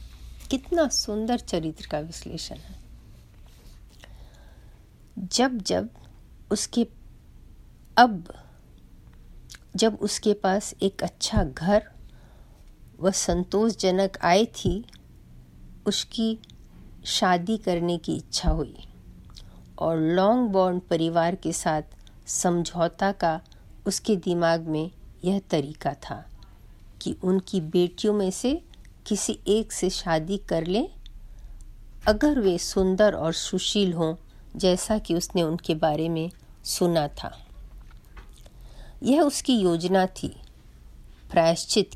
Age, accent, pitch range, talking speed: 50-69, native, 160-210 Hz, 100 wpm